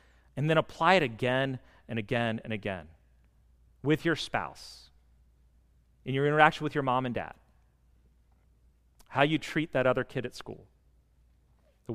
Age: 40-59